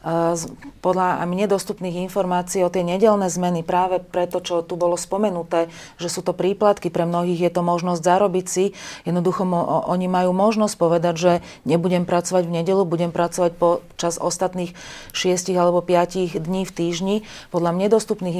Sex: female